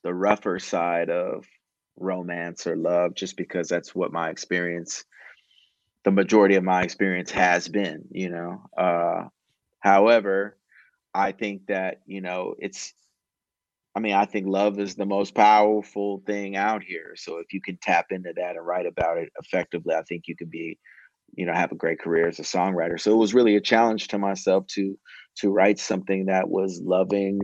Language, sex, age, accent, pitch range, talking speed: English, male, 30-49, American, 95-105 Hz, 180 wpm